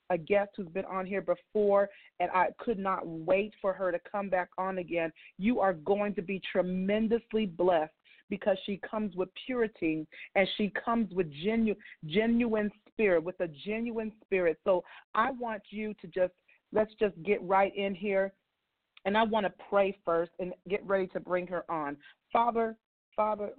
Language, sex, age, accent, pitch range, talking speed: English, female, 40-59, American, 180-210 Hz, 175 wpm